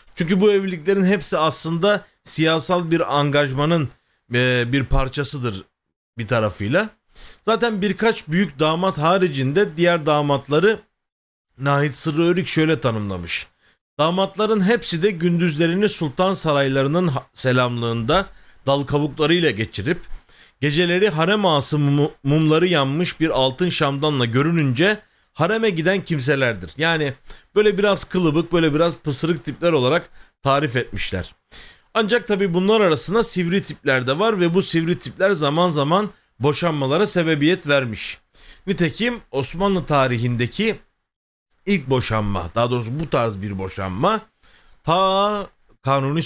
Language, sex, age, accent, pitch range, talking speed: Turkish, male, 40-59, native, 130-185 Hz, 115 wpm